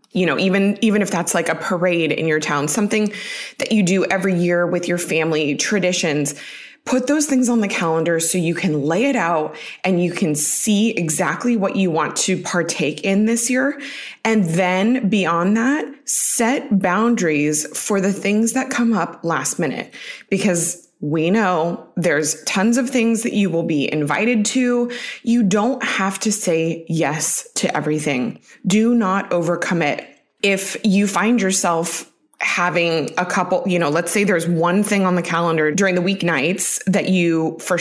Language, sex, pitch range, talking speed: English, female, 170-225 Hz, 175 wpm